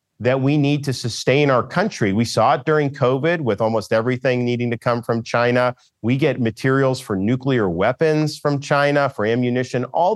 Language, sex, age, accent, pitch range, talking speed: English, male, 40-59, American, 110-130 Hz, 185 wpm